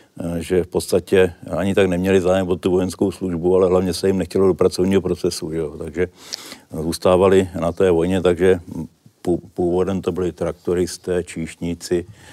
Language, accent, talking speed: Czech, native, 150 wpm